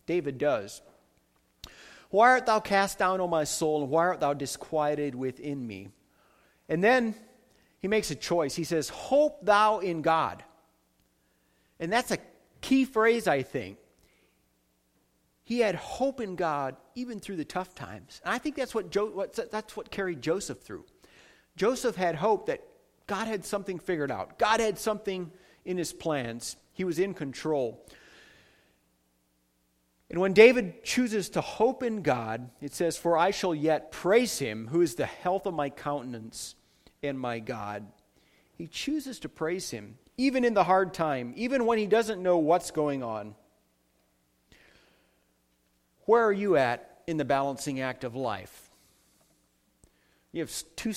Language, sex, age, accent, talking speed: English, male, 40-59, American, 155 wpm